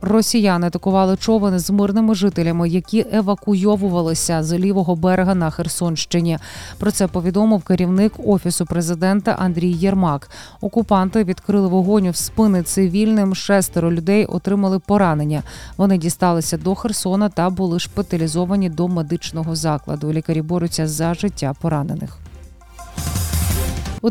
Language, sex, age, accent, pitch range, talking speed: Ukrainian, female, 20-39, native, 170-210 Hz, 115 wpm